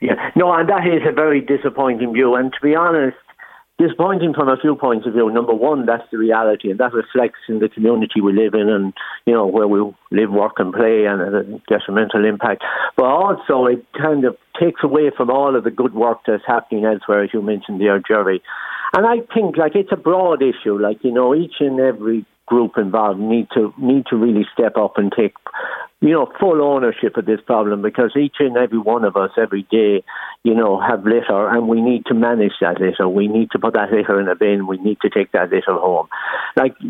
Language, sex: English, male